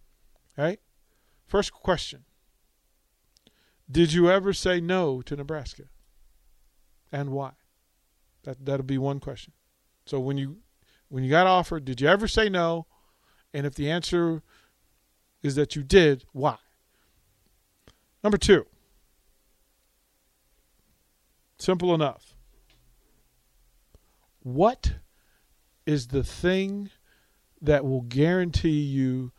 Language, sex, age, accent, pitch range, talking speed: English, male, 50-69, American, 120-185 Hz, 100 wpm